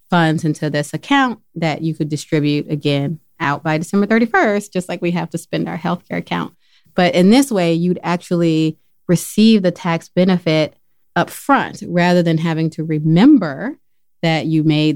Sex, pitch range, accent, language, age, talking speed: female, 150-175 Hz, American, English, 30-49, 170 wpm